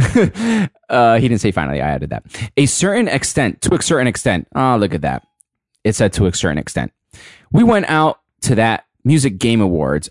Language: English